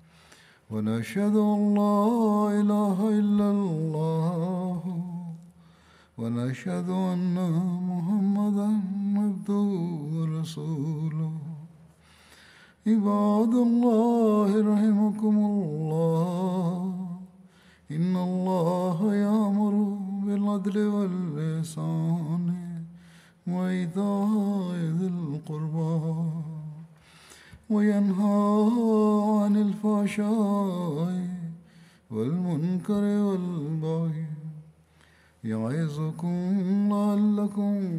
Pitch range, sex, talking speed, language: 160-205 Hz, male, 45 wpm, Turkish